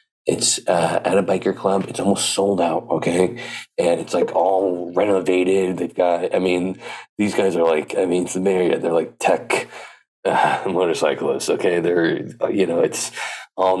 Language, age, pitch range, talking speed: English, 20-39, 85-100 Hz, 175 wpm